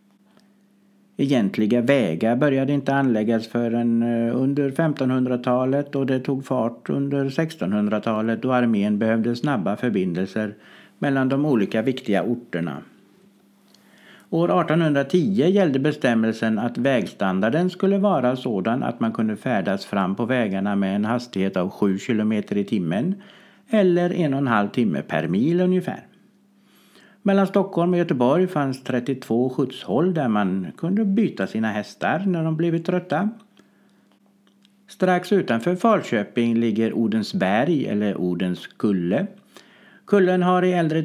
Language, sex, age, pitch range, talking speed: Swedish, male, 60-79, 115-185 Hz, 125 wpm